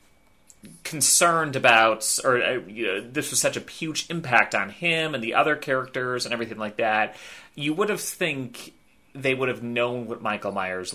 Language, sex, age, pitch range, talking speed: English, male, 30-49, 100-135 Hz, 180 wpm